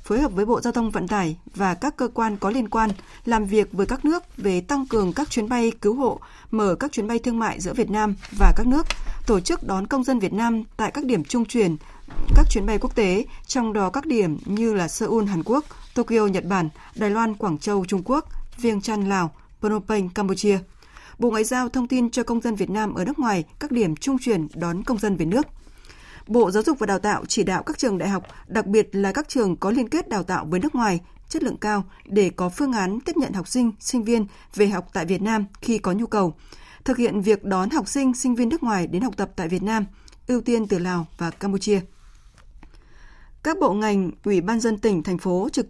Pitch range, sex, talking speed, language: 195-245 Hz, female, 240 wpm, Vietnamese